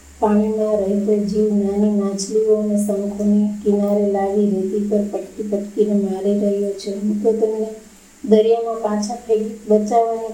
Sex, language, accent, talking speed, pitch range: female, Gujarati, native, 120 wpm, 205-220 Hz